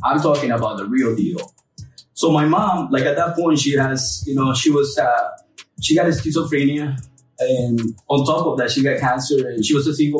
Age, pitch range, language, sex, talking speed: 20-39, 130-170 Hz, English, male, 220 wpm